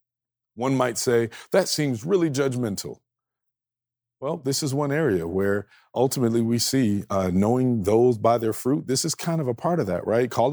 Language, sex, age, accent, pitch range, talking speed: English, male, 40-59, American, 120-150 Hz, 180 wpm